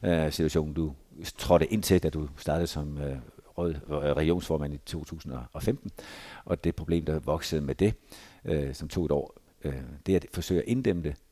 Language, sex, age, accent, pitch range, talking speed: Danish, male, 60-79, native, 80-100 Hz, 170 wpm